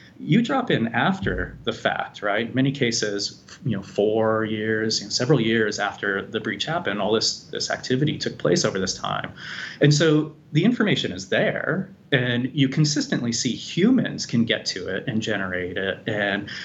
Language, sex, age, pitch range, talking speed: English, male, 30-49, 105-135 Hz, 175 wpm